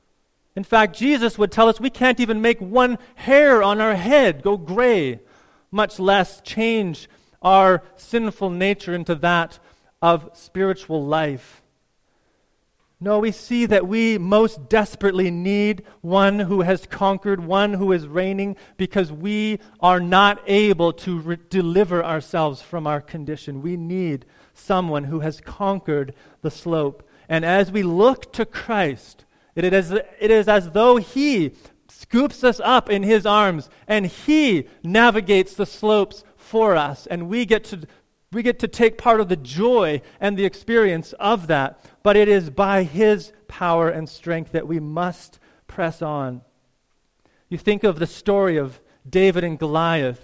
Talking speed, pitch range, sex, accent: 155 wpm, 165-210 Hz, male, American